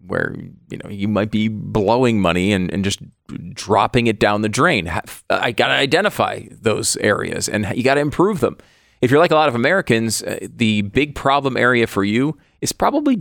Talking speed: 200 wpm